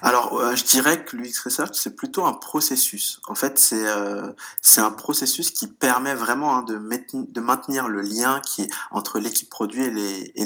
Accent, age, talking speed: French, 20-39, 205 wpm